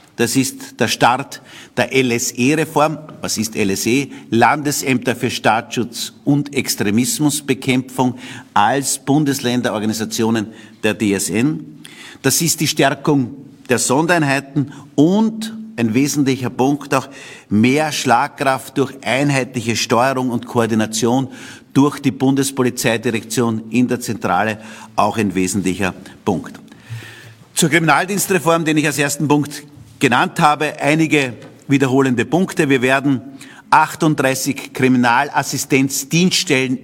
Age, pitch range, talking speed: 50-69, 120-150 Hz, 100 wpm